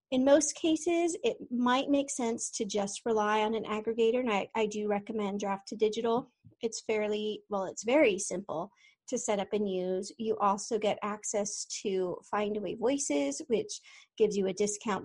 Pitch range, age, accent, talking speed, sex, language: 205-245 Hz, 40-59, American, 180 wpm, female, English